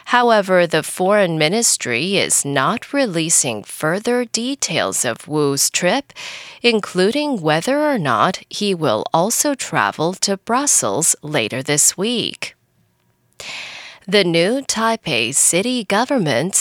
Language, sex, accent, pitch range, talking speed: English, female, American, 155-245 Hz, 110 wpm